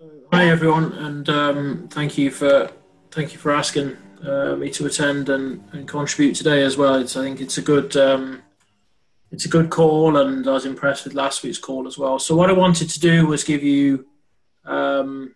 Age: 20-39